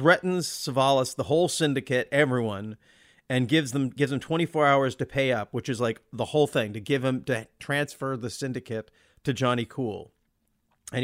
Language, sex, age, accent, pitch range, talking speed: English, male, 40-59, American, 120-150 Hz, 180 wpm